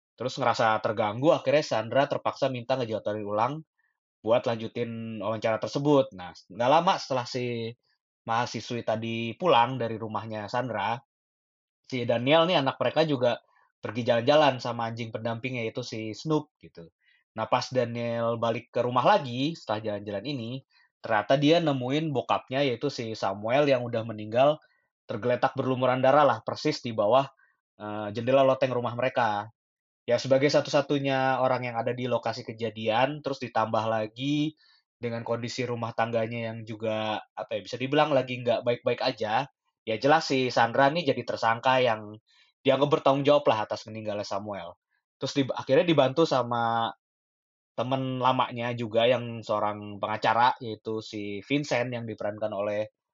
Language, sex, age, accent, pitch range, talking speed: Indonesian, male, 20-39, native, 110-135 Hz, 145 wpm